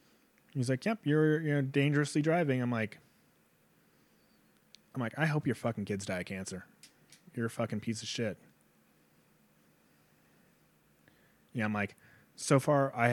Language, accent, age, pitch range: English, American, 20-39, 105-150 Hz